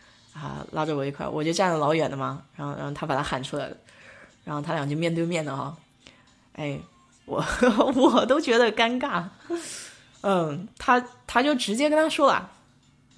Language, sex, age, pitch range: Chinese, female, 20-39, 155-210 Hz